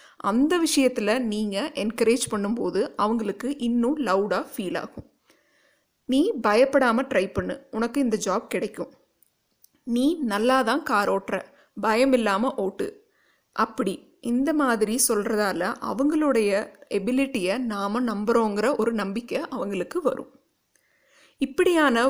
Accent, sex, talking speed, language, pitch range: native, female, 105 wpm, Tamil, 215-270 Hz